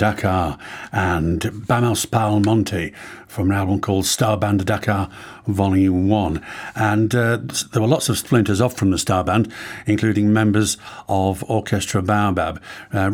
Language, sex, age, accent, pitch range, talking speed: English, male, 50-69, British, 100-120 Hz, 145 wpm